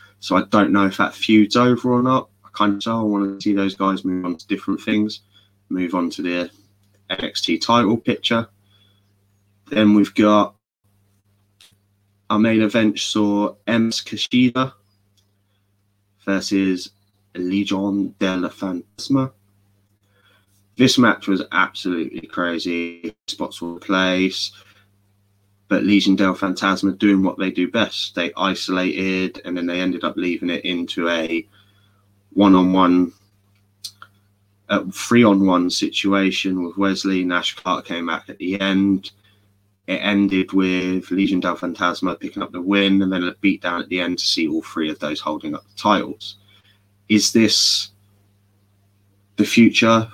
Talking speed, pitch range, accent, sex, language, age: 145 wpm, 95-100 Hz, British, male, English, 20-39